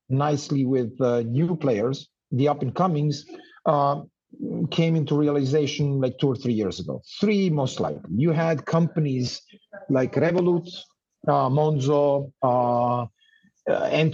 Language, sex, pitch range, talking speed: English, male, 135-170 Hz, 125 wpm